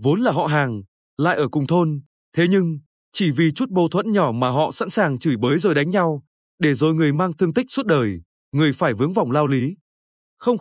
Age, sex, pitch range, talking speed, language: 20-39, male, 145-195 Hz, 225 wpm, Vietnamese